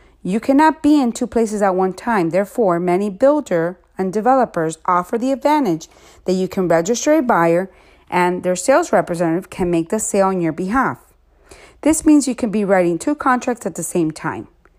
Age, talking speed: 40-59, 185 wpm